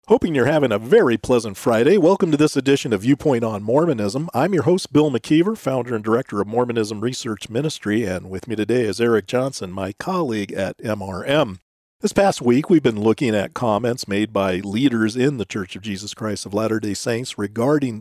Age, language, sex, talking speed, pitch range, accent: 40-59, English, male, 195 wpm, 110-155 Hz, American